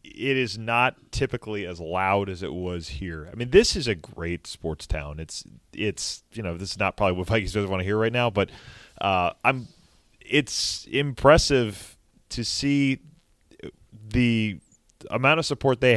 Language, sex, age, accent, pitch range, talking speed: English, male, 20-39, American, 90-120 Hz, 175 wpm